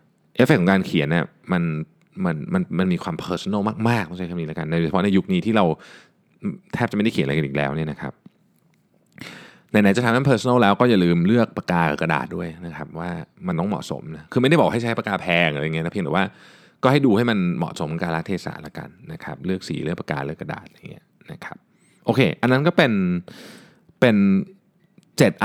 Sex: male